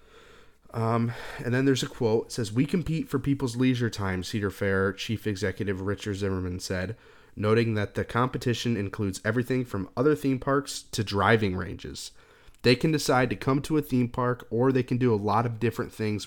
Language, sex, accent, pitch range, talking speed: English, male, American, 100-130 Hz, 190 wpm